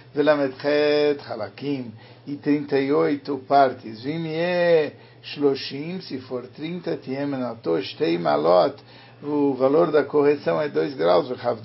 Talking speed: 125 wpm